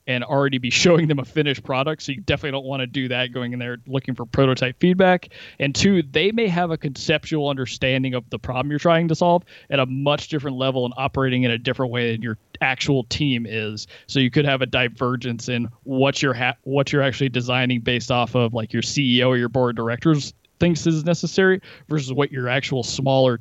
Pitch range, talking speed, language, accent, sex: 120-145 Hz, 225 wpm, English, American, male